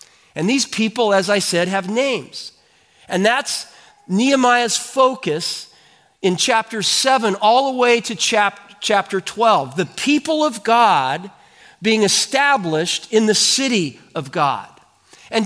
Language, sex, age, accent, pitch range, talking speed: English, male, 40-59, American, 195-255 Hz, 130 wpm